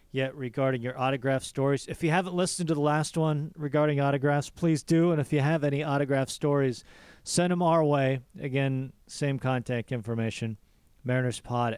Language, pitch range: English, 125-170 Hz